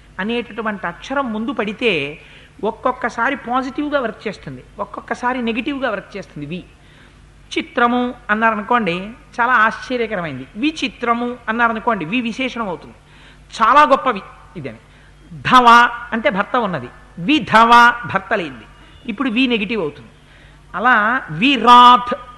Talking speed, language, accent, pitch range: 115 wpm, Telugu, native, 215-275 Hz